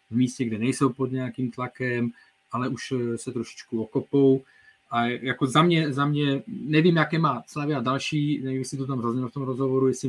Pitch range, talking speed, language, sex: 120-135 Hz, 195 wpm, Czech, male